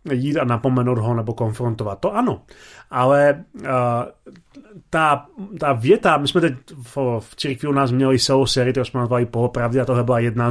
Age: 30-49